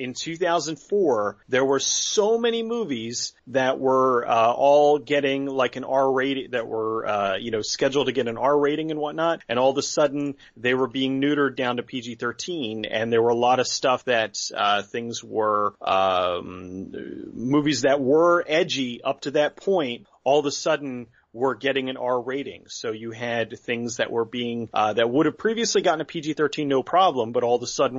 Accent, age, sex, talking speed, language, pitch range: American, 30-49, male, 205 wpm, English, 120-150 Hz